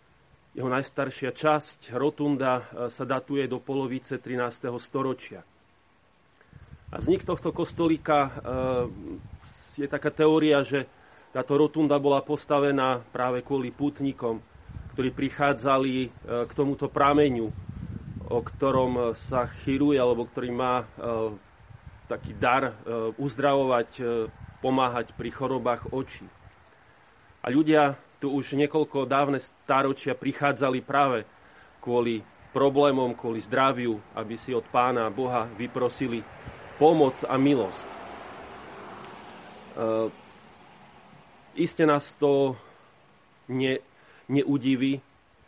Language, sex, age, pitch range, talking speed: Slovak, male, 30-49, 120-140 Hz, 95 wpm